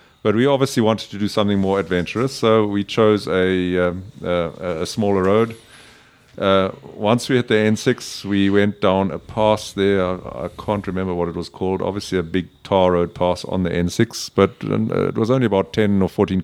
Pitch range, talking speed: 95-110 Hz, 205 wpm